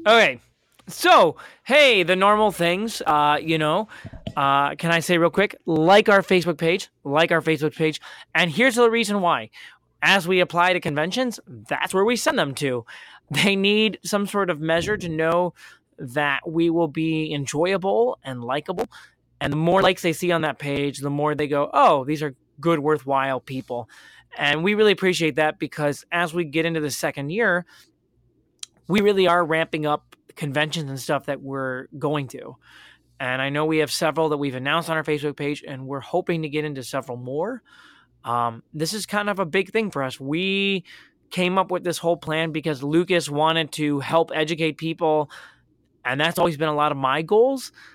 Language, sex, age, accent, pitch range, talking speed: English, male, 20-39, American, 145-180 Hz, 190 wpm